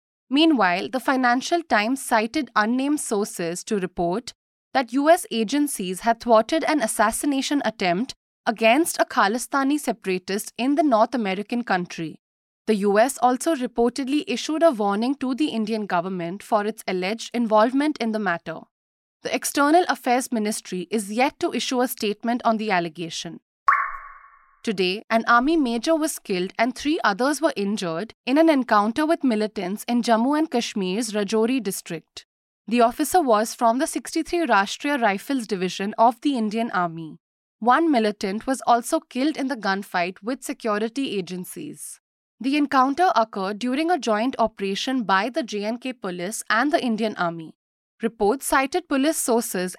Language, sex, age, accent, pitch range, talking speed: English, female, 20-39, Indian, 205-280 Hz, 145 wpm